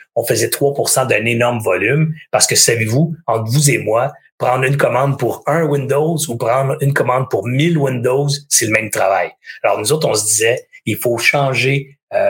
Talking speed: 195 wpm